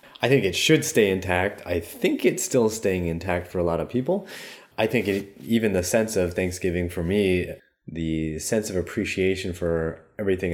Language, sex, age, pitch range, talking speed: English, male, 20-39, 85-120 Hz, 180 wpm